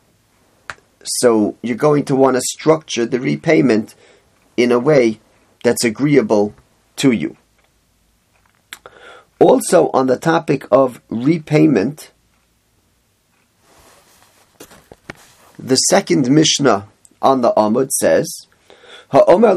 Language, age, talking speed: English, 40-59, 90 wpm